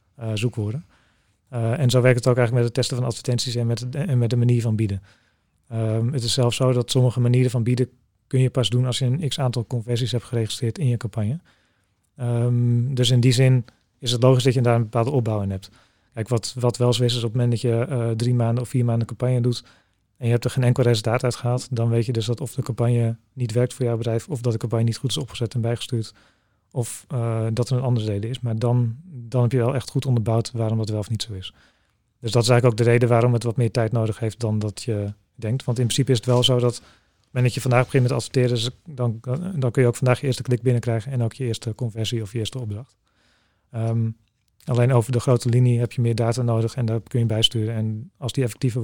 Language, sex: English, male